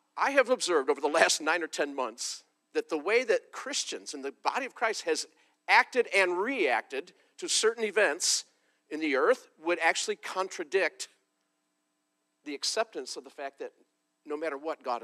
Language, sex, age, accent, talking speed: English, male, 50-69, American, 170 wpm